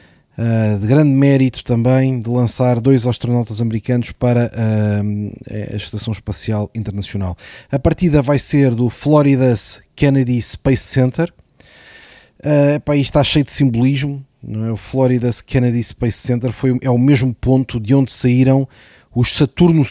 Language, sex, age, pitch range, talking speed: Portuguese, male, 20-39, 115-140 Hz, 145 wpm